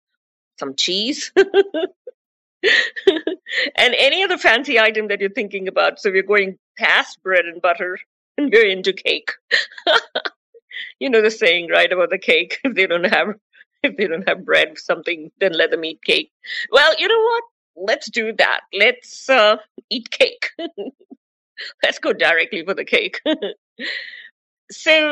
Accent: Indian